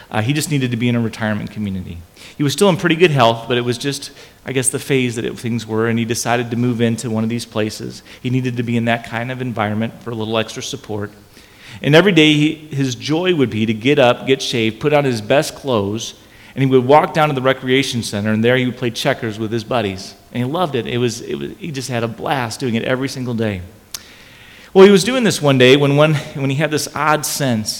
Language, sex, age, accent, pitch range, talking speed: English, male, 40-59, American, 115-135 Hz, 255 wpm